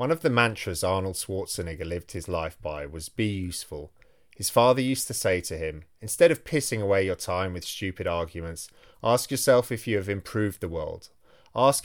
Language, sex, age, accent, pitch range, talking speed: English, male, 30-49, British, 90-120 Hz, 190 wpm